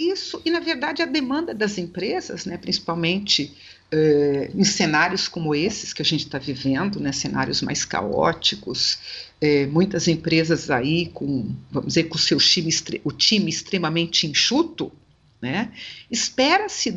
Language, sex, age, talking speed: Portuguese, female, 50-69, 140 wpm